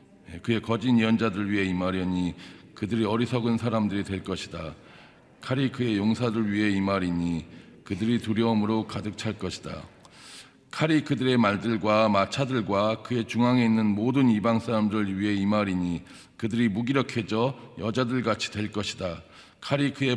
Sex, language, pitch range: male, Korean, 100-120 Hz